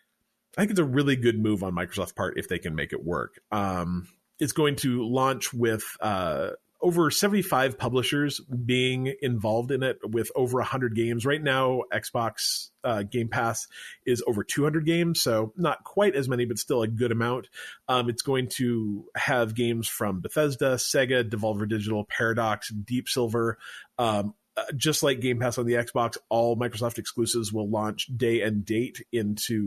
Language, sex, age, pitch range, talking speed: English, male, 30-49, 110-135 Hz, 175 wpm